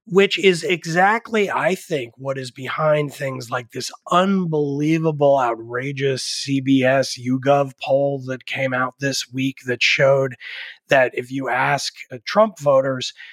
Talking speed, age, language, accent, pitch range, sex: 135 wpm, 30-49, English, American, 135-180 Hz, male